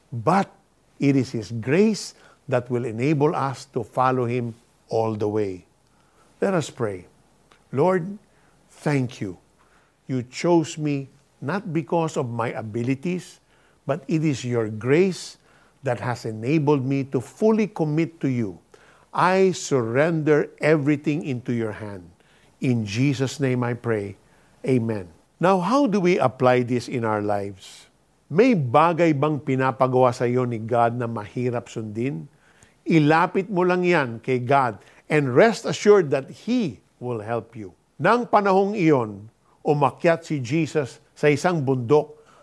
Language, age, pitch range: Filipino, 50-69, 125-175 Hz